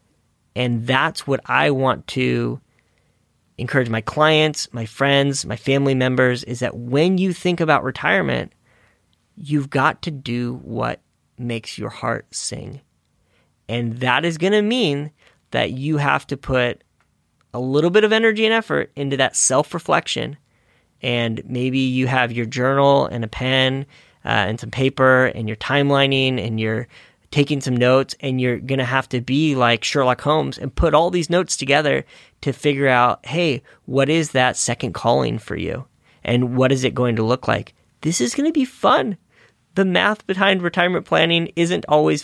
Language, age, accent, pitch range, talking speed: English, 30-49, American, 120-155 Hz, 170 wpm